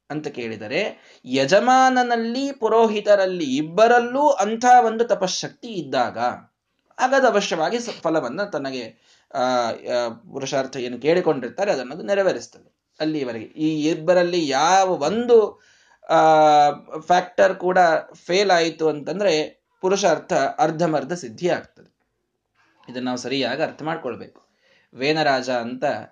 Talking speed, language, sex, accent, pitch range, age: 85 wpm, Kannada, male, native, 155-235 Hz, 20-39